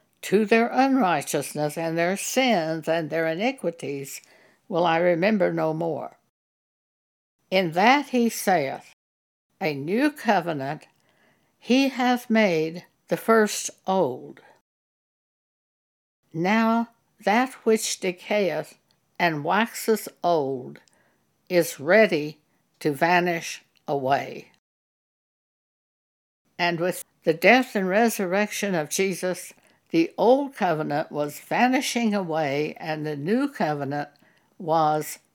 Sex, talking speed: female, 100 wpm